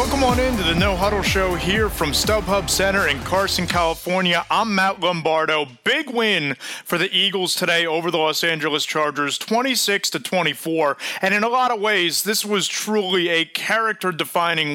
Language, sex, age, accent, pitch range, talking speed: English, male, 30-49, American, 145-190 Hz, 175 wpm